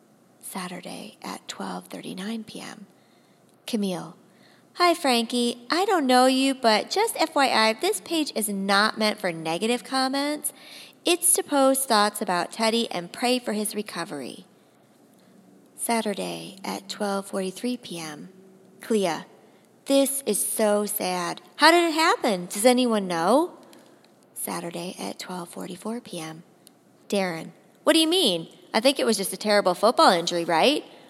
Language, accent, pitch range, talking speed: English, American, 190-270 Hz, 130 wpm